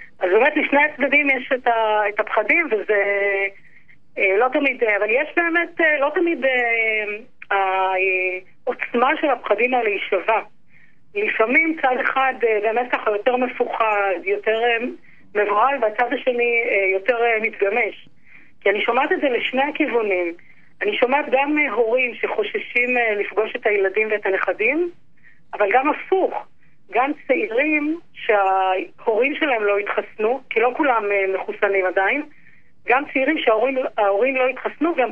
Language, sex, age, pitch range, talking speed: Hebrew, female, 30-49, 210-290 Hz, 120 wpm